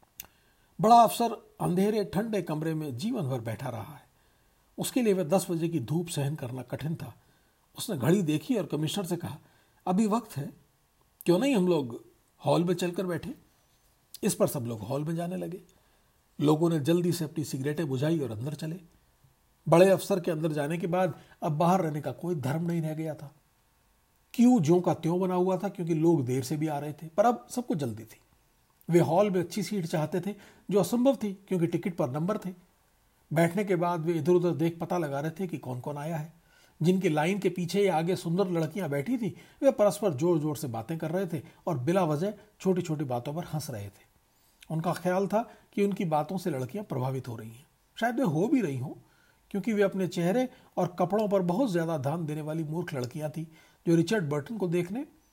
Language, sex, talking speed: Hindi, male, 210 wpm